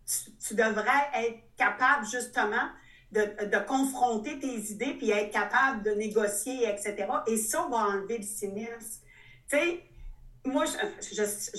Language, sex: French, female